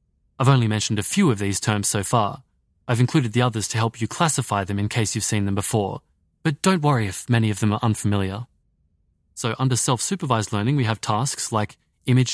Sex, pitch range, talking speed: male, 105-140 Hz, 215 wpm